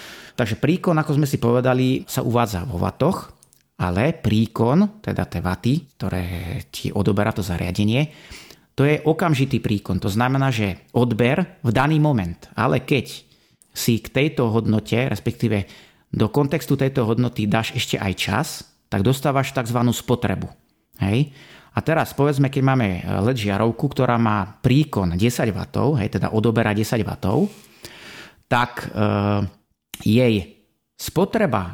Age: 30-49